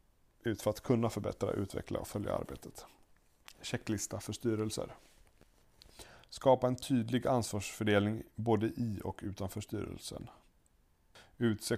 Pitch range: 95-115 Hz